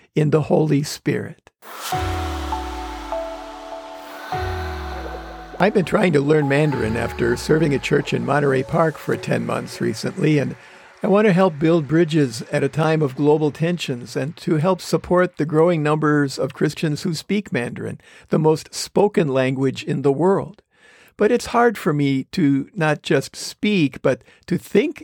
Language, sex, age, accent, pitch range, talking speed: English, male, 50-69, American, 140-175 Hz, 155 wpm